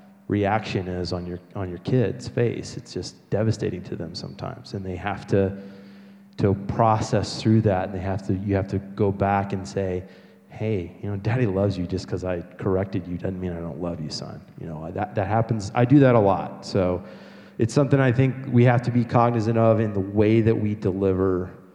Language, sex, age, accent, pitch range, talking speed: English, male, 20-39, American, 95-115 Hz, 215 wpm